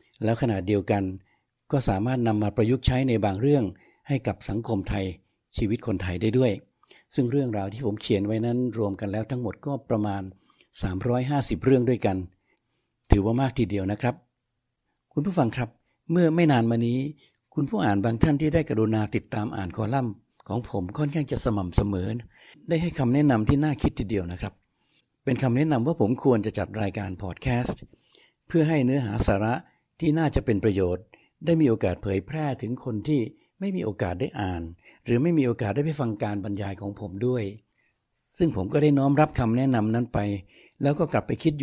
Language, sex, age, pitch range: Thai, male, 60-79, 105-135 Hz